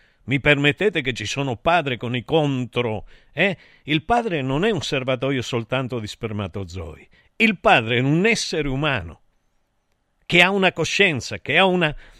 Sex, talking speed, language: male, 155 wpm, Italian